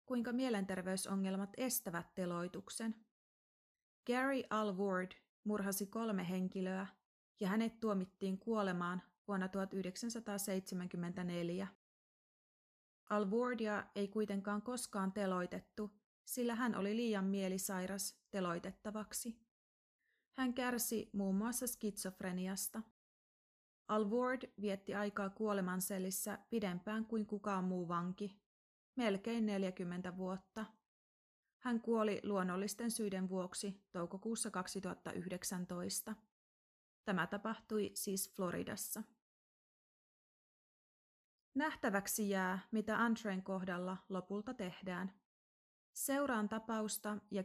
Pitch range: 185-220 Hz